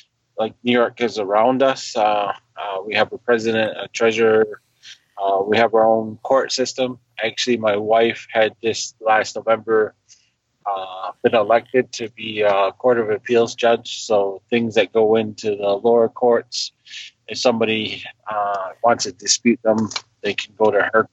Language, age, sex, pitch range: English, 20-39, male, 110-125 Hz